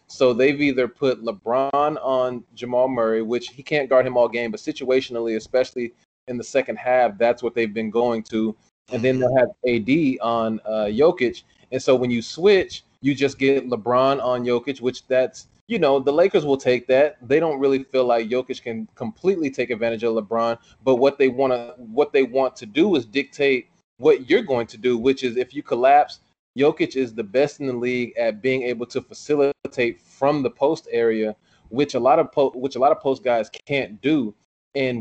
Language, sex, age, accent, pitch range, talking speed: English, male, 20-39, American, 120-140 Hz, 200 wpm